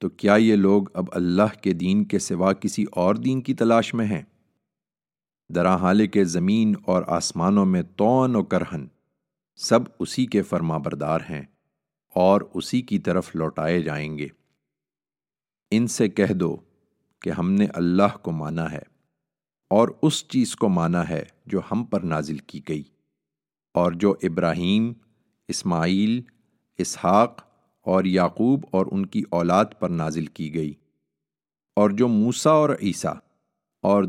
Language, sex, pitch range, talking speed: English, male, 85-105 Hz, 140 wpm